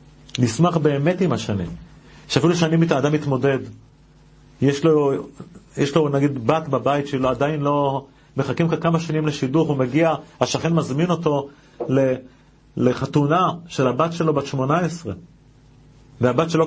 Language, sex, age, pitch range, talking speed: Hebrew, male, 40-59, 130-165 Hz, 125 wpm